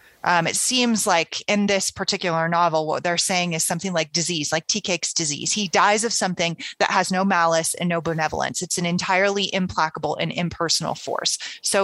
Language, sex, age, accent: English, female, 30-49, American